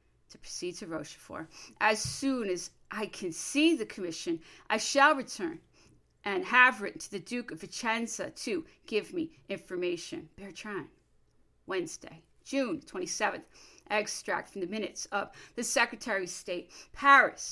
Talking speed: 145 wpm